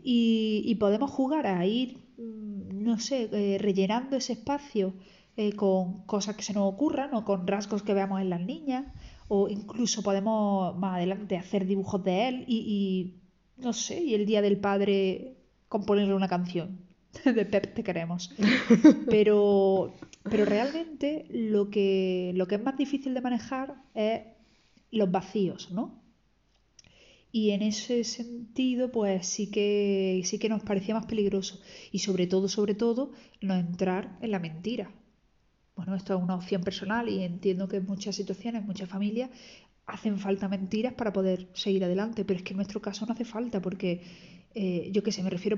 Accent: Spanish